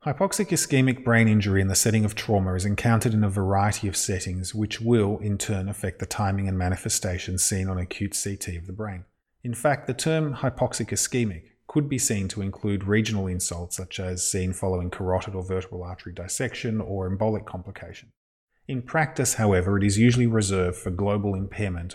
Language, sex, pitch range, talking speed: English, male, 95-115 Hz, 185 wpm